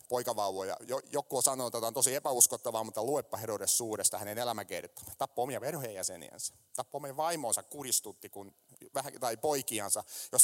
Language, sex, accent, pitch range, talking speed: Finnish, male, native, 110-150 Hz, 145 wpm